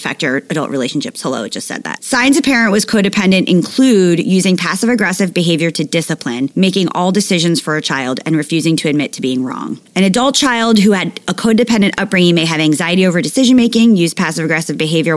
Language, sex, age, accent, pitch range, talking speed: English, female, 30-49, American, 155-205 Hz, 200 wpm